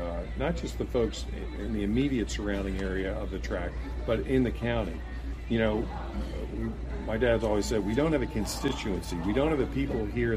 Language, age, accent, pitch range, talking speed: English, 50-69, American, 95-115 Hz, 205 wpm